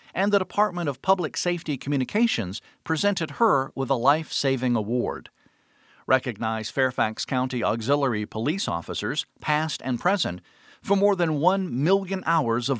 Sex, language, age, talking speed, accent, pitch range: male, English, 50-69, 135 wpm, American, 130-185 Hz